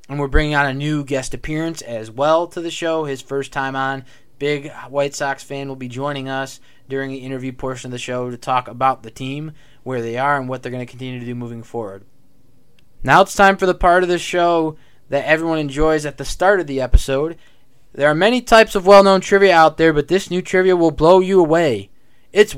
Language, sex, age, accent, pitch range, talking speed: English, male, 20-39, American, 130-170 Hz, 230 wpm